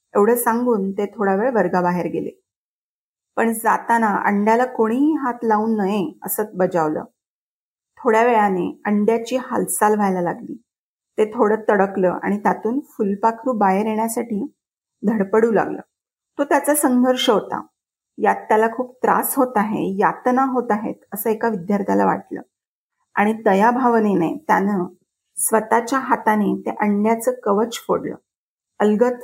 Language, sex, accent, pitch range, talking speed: Marathi, female, native, 205-240 Hz, 120 wpm